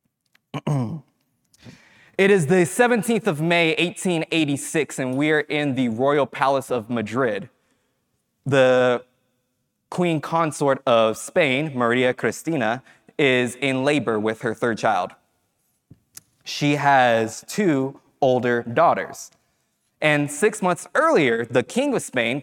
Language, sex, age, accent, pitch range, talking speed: English, male, 20-39, American, 115-145 Hz, 110 wpm